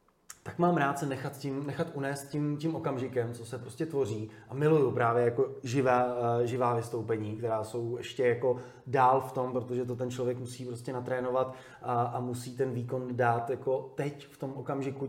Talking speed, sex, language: 185 wpm, male, Czech